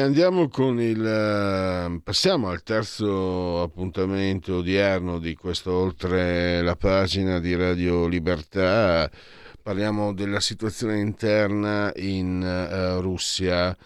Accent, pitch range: native, 90-110 Hz